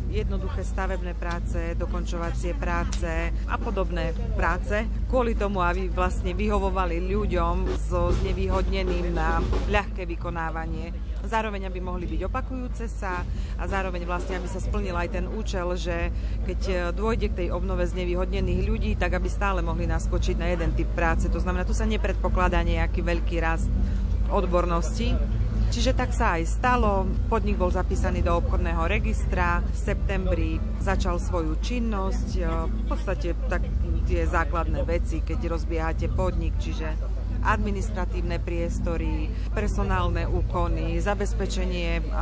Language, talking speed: Slovak, 130 wpm